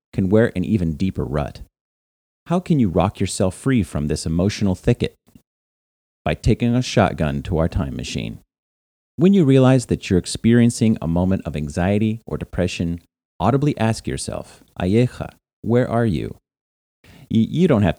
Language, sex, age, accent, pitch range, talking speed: English, male, 40-59, American, 80-110 Hz, 155 wpm